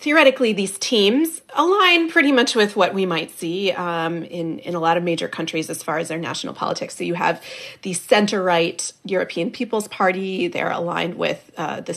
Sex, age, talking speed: female, 30-49, 190 wpm